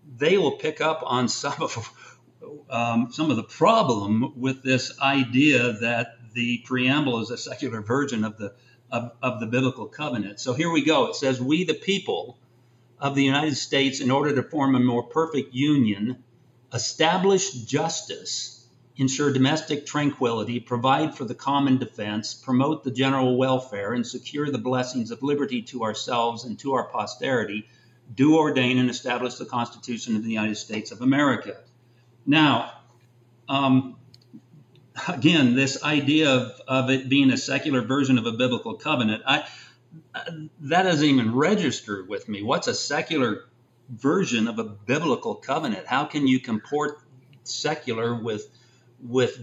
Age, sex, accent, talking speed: 50-69, male, American, 150 wpm